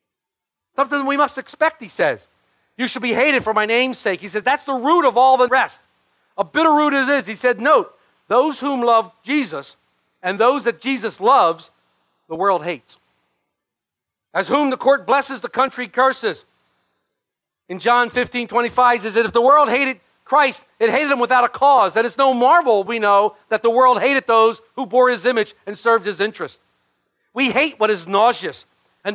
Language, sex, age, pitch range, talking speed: English, male, 40-59, 210-270 Hz, 190 wpm